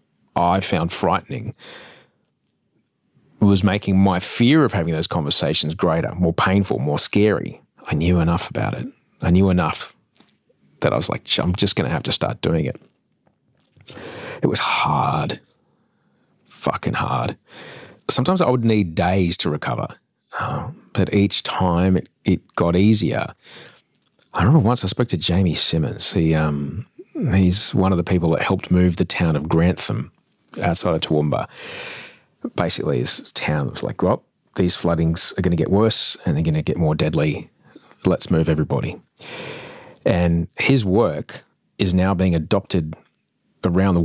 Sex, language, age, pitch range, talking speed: male, English, 40-59, 85-100 Hz, 155 wpm